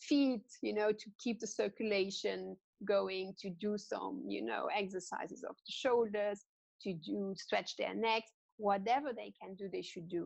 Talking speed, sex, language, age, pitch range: 170 wpm, female, English, 30-49, 180-215 Hz